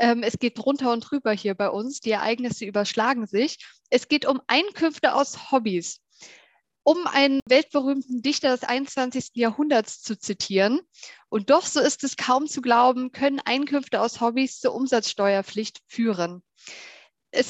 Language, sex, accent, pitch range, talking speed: German, female, German, 225-275 Hz, 145 wpm